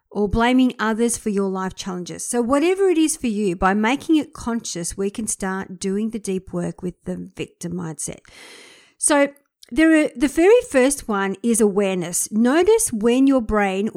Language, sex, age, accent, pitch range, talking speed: English, female, 50-69, Australian, 195-265 Hz, 175 wpm